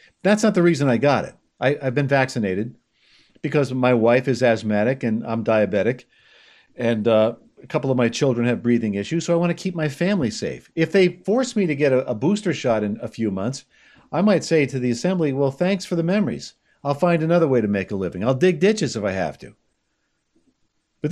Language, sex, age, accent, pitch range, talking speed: English, male, 50-69, American, 120-170 Hz, 220 wpm